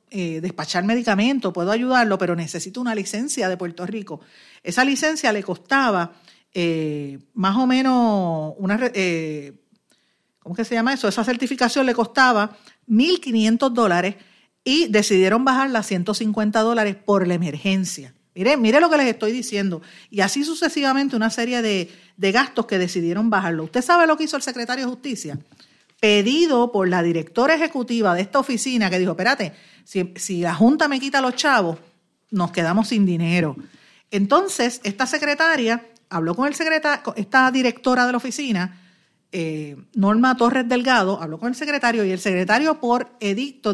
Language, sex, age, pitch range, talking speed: Spanish, female, 50-69, 185-255 Hz, 160 wpm